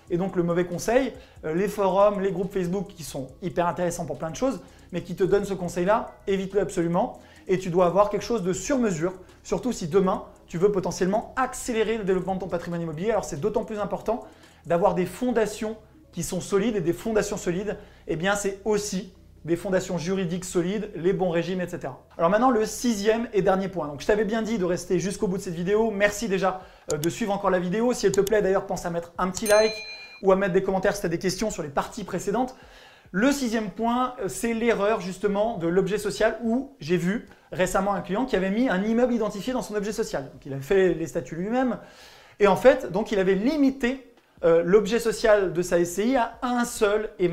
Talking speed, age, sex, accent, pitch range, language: 220 wpm, 20-39, male, French, 180-220 Hz, French